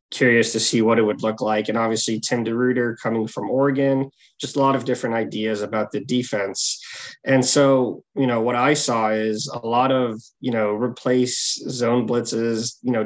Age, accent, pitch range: 20-39, American, 110-125 Hz